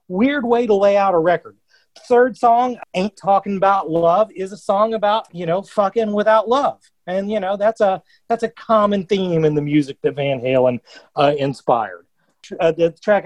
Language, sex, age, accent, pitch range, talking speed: English, male, 40-59, American, 155-210 Hz, 190 wpm